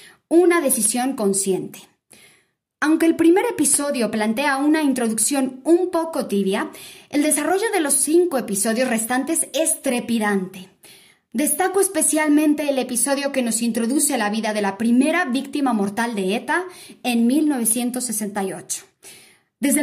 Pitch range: 220-295 Hz